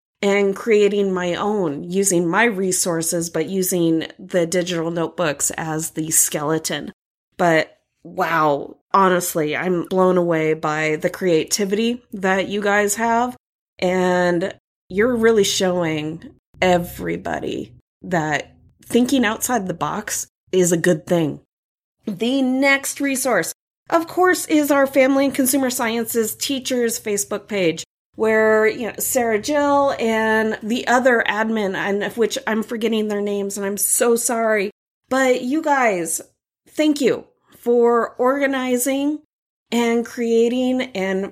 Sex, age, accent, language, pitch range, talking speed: female, 20-39, American, English, 180-240 Hz, 125 wpm